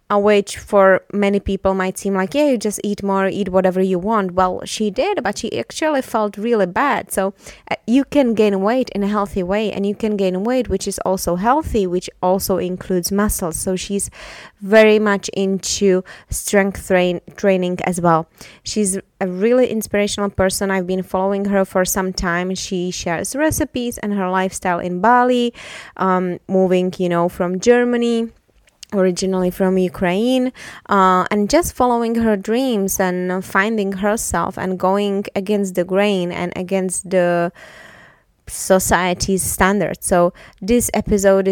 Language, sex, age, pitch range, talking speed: English, female, 20-39, 185-210 Hz, 155 wpm